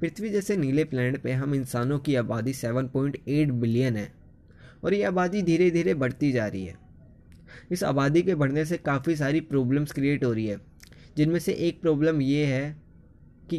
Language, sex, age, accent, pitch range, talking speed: Hindi, male, 20-39, native, 125-170 Hz, 175 wpm